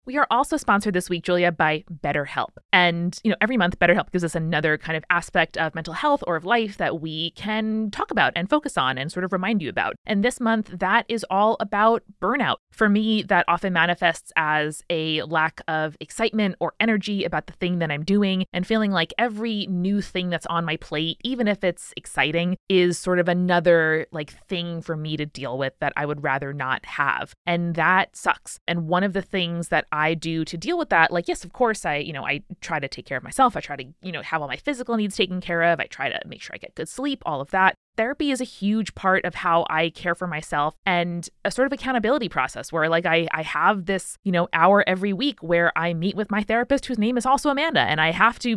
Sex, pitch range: female, 165-220 Hz